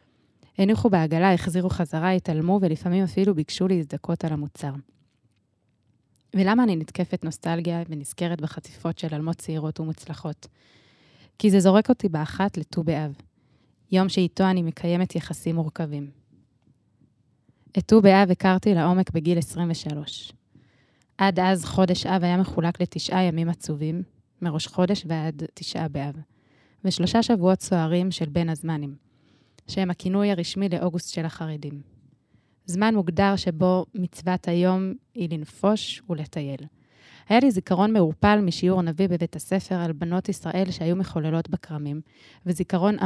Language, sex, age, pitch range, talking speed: Hebrew, female, 20-39, 155-185 Hz, 125 wpm